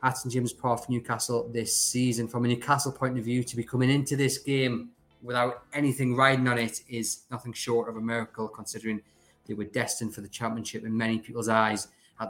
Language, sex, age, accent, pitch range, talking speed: English, male, 20-39, British, 110-130 Hz, 205 wpm